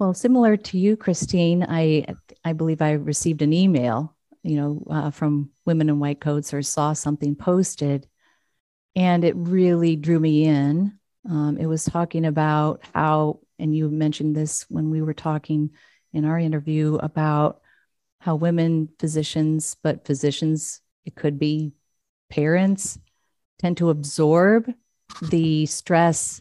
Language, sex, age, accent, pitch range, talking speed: English, female, 40-59, American, 150-165 Hz, 140 wpm